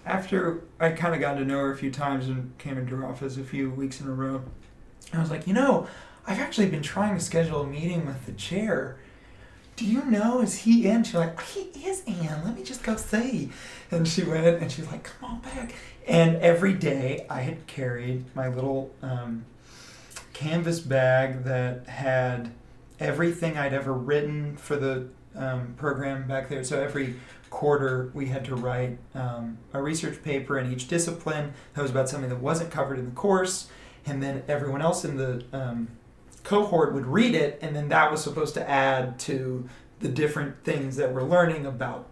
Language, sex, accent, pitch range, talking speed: English, male, American, 130-170 Hz, 195 wpm